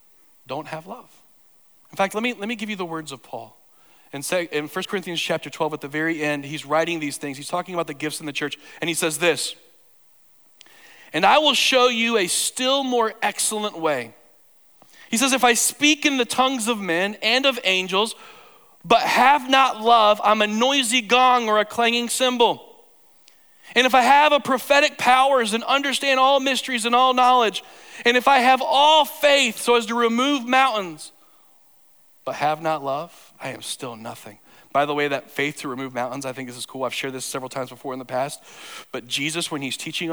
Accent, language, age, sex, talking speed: American, English, 40-59, male, 200 wpm